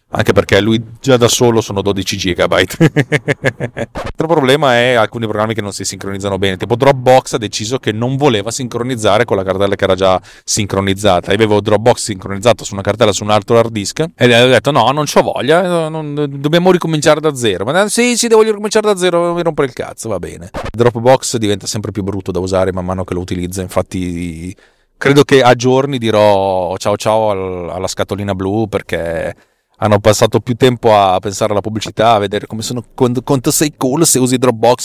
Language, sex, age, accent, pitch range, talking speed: Italian, male, 30-49, native, 100-130 Hz, 195 wpm